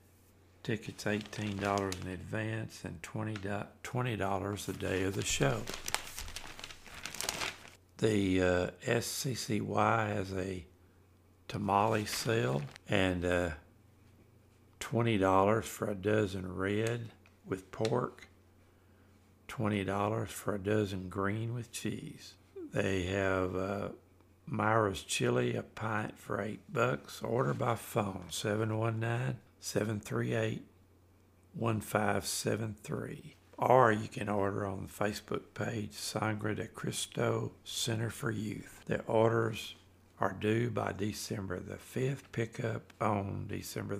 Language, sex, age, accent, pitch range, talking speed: English, male, 60-79, American, 95-110 Hz, 105 wpm